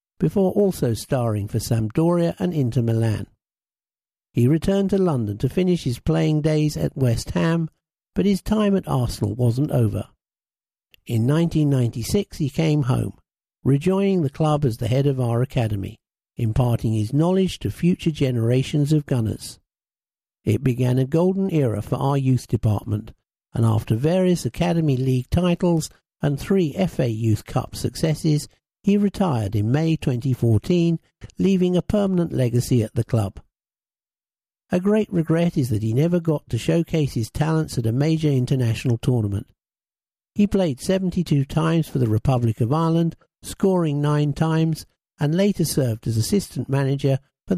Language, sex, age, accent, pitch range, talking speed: English, male, 50-69, British, 115-165 Hz, 150 wpm